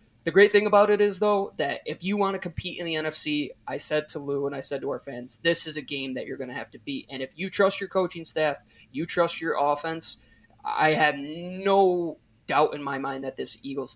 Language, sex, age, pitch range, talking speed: English, male, 20-39, 135-175 Hz, 250 wpm